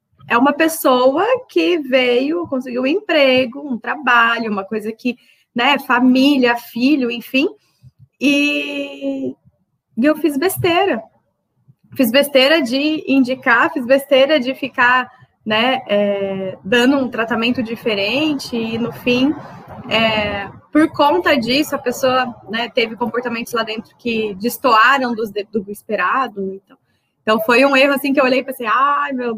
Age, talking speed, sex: 20-39, 135 wpm, female